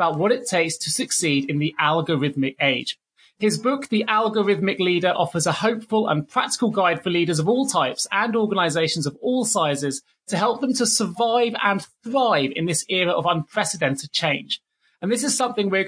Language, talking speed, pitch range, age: English, 185 wpm, 160-215 Hz, 30-49